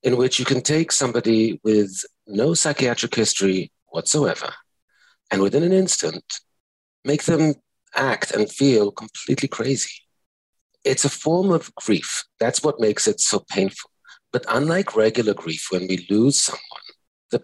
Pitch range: 105-135 Hz